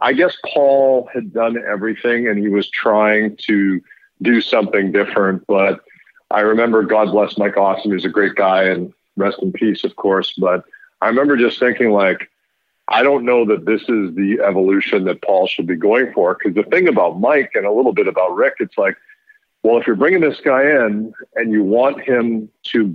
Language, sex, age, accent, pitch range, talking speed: English, male, 50-69, American, 100-125 Hz, 200 wpm